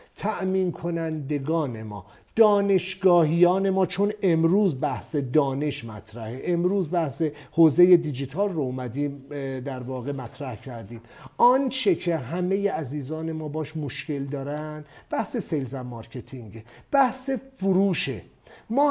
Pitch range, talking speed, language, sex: 140-200 Hz, 110 wpm, English, male